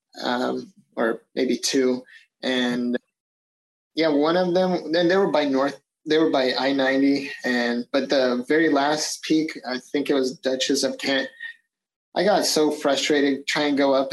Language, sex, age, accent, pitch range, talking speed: English, male, 30-49, American, 135-155 Hz, 165 wpm